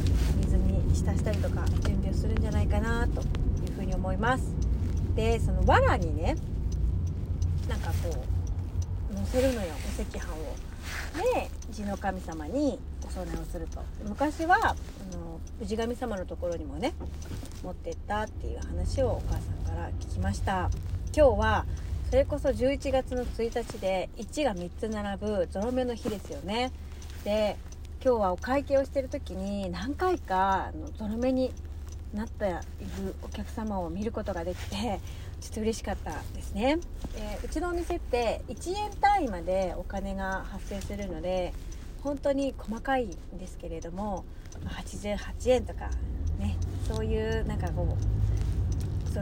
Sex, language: female, Japanese